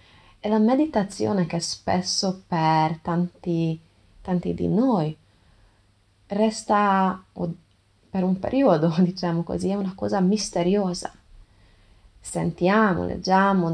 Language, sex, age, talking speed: Italian, female, 20-39, 95 wpm